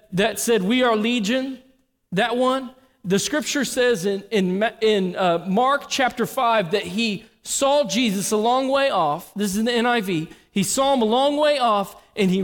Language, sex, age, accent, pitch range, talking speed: English, male, 40-59, American, 175-230 Hz, 185 wpm